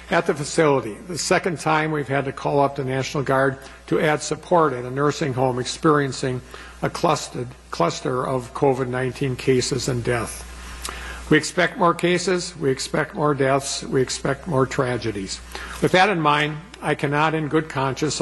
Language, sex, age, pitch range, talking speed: English, male, 60-79, 130-155 Hz, 165 wpm